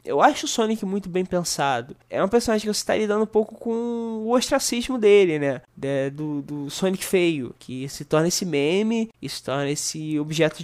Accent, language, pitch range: Brazilian, Portuguese, 150-210 Hz